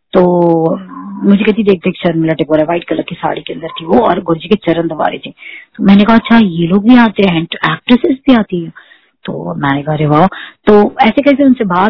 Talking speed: 120 wpm